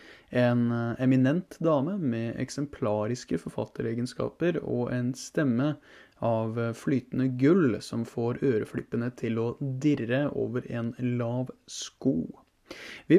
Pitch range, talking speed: 120-155 Hz, 105 wpm